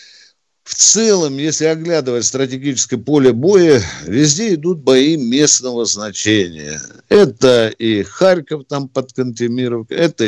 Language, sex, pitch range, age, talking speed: Russian, male, 115-165 Hz, 60-79, 110 wpm